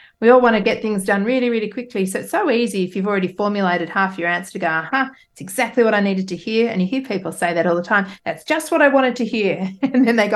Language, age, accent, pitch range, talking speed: English, 40-59, Australian, 185-220 Hz, 300 wpm